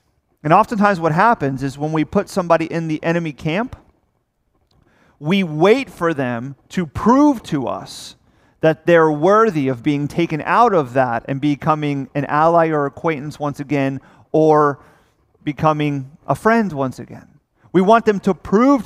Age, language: 40-59, English